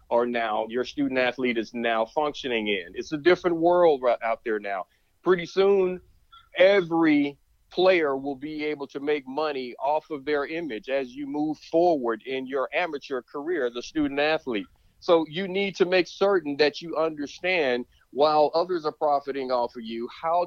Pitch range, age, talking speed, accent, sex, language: 135-175 Hz, 40-59, 175 wpm, American, male, English